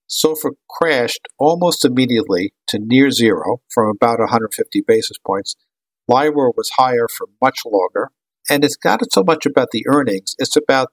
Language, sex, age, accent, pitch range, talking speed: English, male, 50-69, American, 115-155 Hz, 155 wpm